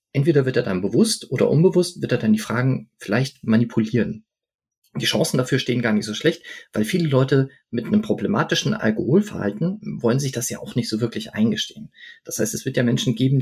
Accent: German